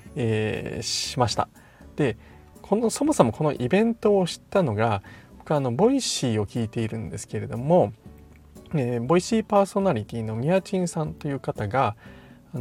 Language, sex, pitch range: Japanese, male, 110-170 Hz